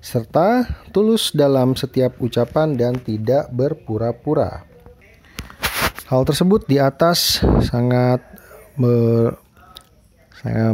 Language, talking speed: Indonesian, 80 wpm